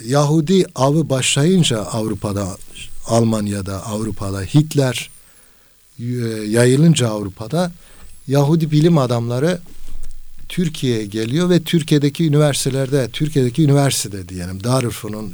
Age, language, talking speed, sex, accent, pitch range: 60-79, Turkish, 80 wpm, male, native, 105-140 Hz